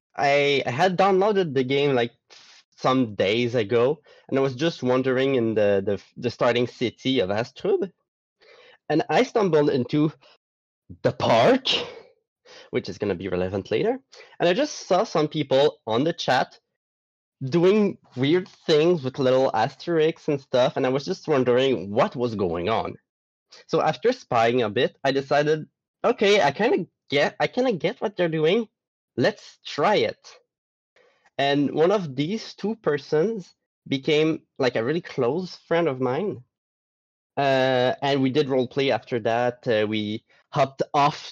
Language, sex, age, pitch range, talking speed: English, male, 20-39, 120-165 Hz, 155 wpm